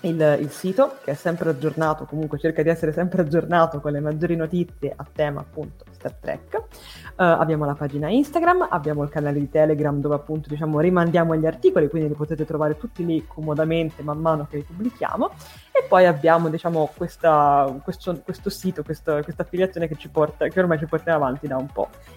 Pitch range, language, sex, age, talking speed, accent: 150-185 Hz, Italian, female, 20-39, 195 wpm, native